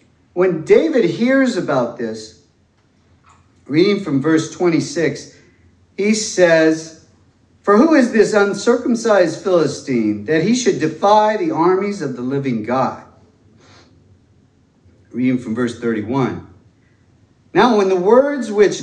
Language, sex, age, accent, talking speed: English, male, 50-69, American, 115 wpm